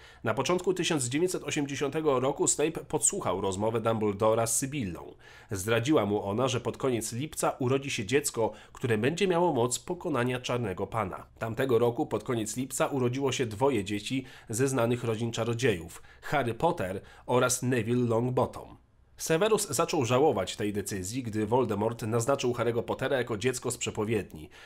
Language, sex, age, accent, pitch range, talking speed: Polish, male, 40-59, native, 110-140 Hz, 145 wpm